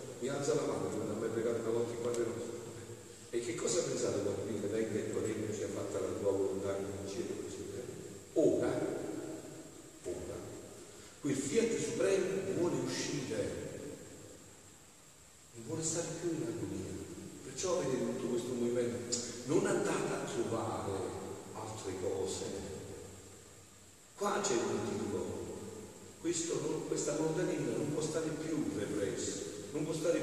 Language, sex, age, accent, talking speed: Italian, male, 40-59, native, 125 wpm